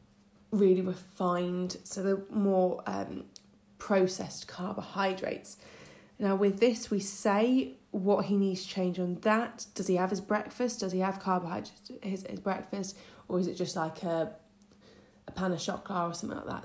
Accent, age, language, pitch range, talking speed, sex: British, 20-39, English, 185-215 Hz, 165 wpm, female